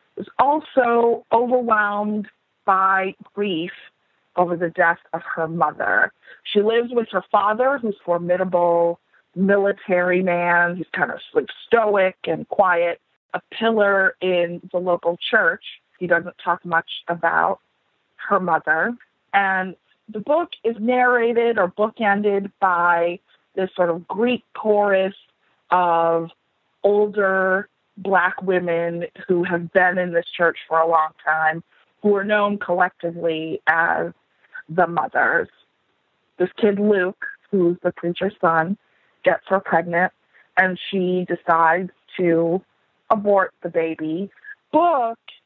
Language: English